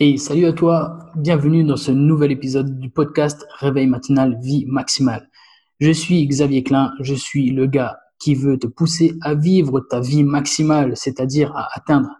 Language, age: French, 20-39